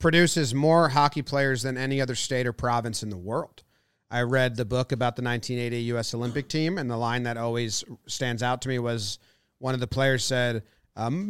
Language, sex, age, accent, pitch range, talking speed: English, male, 30-49, American, 120-160 Hz, 205 wpm